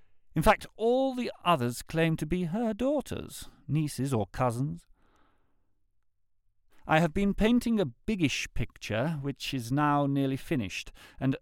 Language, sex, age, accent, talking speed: English, male, 50-69, British, 135 wpm